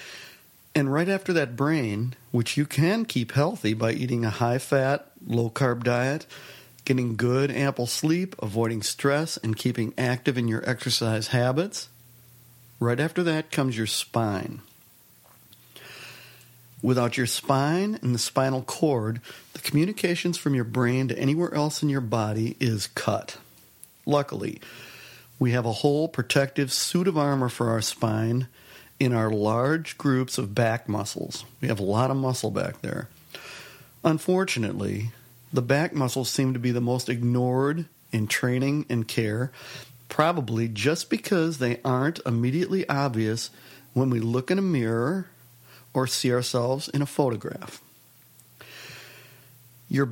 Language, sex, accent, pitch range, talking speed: English, male, American, 120-145 Hz, 140 wpm